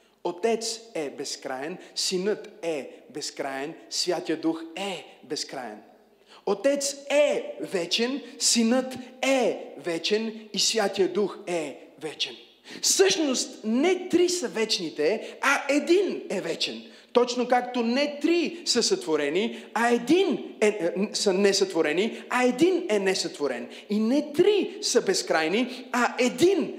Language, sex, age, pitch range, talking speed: Bulgarian, male, 40-59, 170-255 Hz, 120 wpm